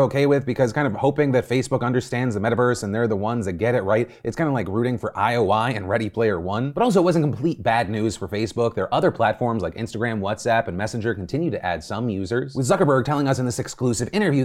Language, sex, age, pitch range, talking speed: English, male, 30-49, 100-140 Hz, 250 wpm